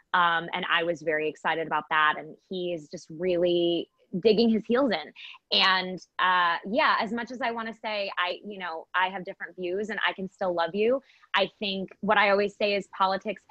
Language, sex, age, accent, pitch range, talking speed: English, female, 20-39, American, 175-215 Hz, 215 wpm